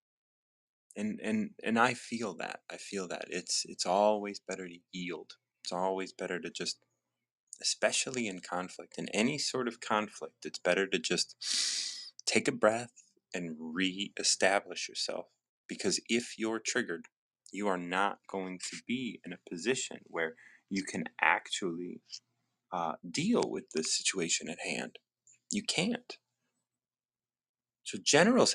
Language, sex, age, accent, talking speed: English, male, 30-49, American, 140 wpm